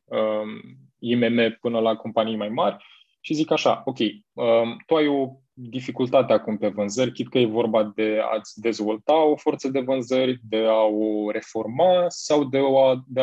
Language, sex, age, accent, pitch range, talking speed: Romanian, male, 20-39, native, 115-135 Hz, 155 wpm